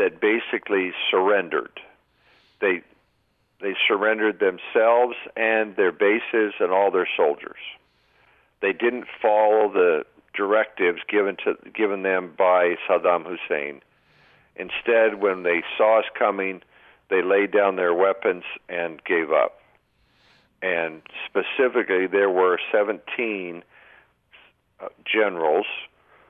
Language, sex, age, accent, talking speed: English, male, 50-69, American, 105 wpm